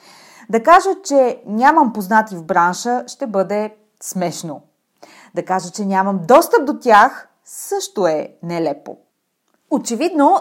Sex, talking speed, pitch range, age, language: female, 120 wpm, 180-270 Hz, 30-49, Bulgarian